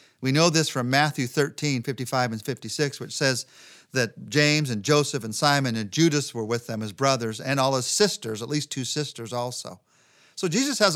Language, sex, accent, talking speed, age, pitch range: English, male, American, 195 wpm, 40-59, 120-175 Hz